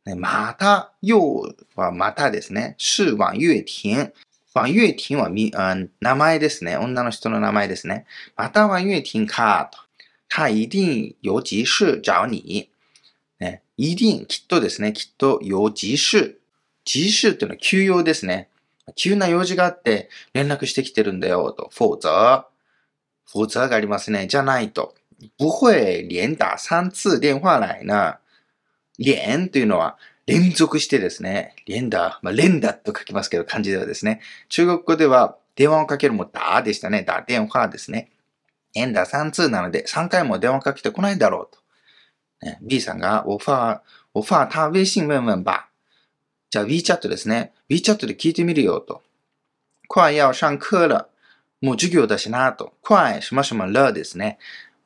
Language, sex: Japanese, male